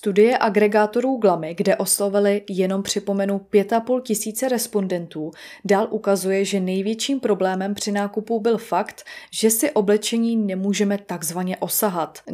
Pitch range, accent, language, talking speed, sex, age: 190-225 Hz, native, Czech, 120 wpm, female, 20-39